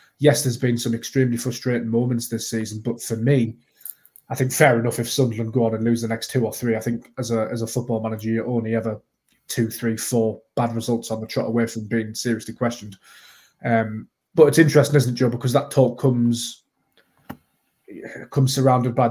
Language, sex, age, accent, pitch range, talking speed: English, male, 20-39, British, 115-125 Hz, 205 wpm